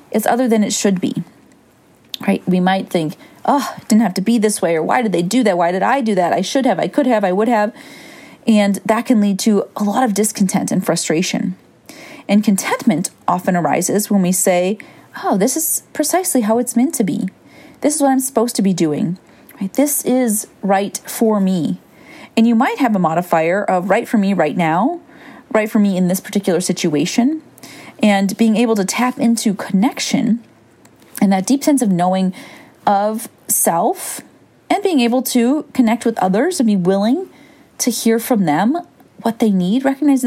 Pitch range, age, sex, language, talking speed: 195-255 Hz, 30-49, female, English, 195 wpm